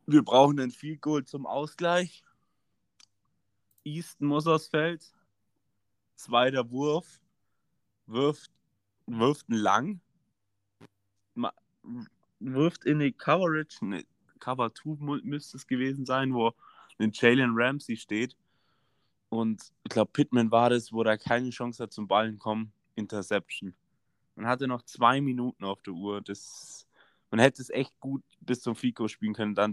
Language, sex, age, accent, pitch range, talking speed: Danish, male, 20-39, German, 110-140 Hz, 135 wpm